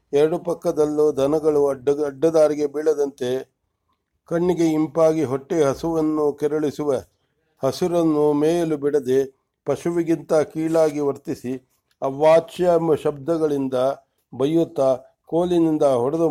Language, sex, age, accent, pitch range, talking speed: English, male, 60-79, Indian, 140-160 Hz, 75 wpm